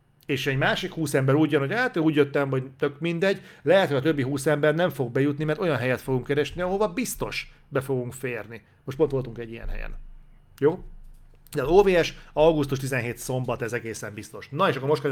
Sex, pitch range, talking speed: male, 135-165 Hz, 205 wpm